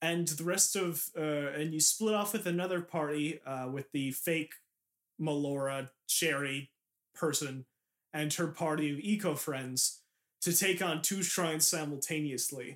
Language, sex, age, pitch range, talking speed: English, male, 30-49, 135-175 Hz, 140 wpm